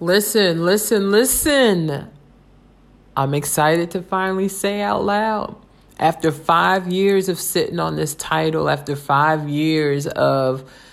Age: 40-59